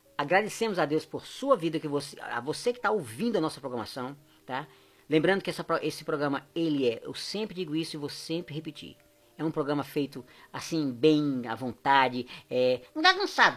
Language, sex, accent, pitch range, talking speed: Portuguese, female, Brazilian, 140-200 Hz, 190 wpm